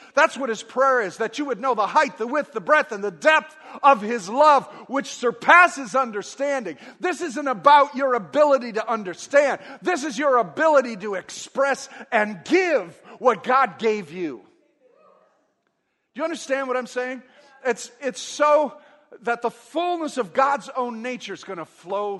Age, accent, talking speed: 50-69, American, 170 wpm